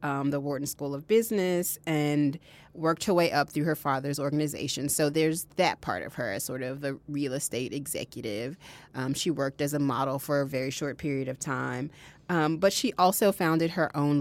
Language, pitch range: English, 145-180 Hz